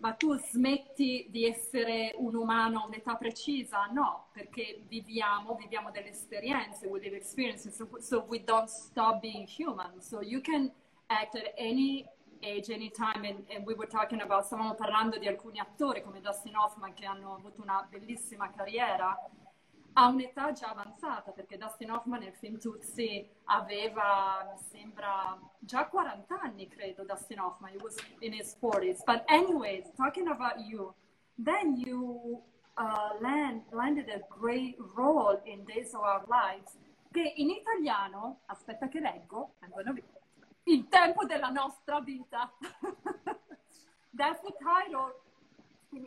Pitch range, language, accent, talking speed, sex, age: 205-260 Hz, Italian, native, 145 wpm, female, 30-49